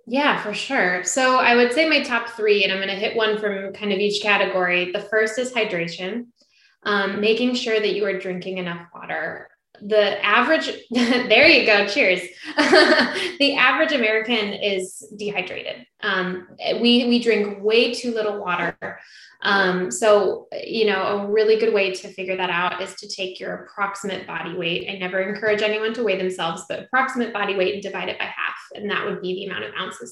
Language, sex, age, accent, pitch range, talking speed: English, female, 10-29, American, 190-225 Hz, 190 wpm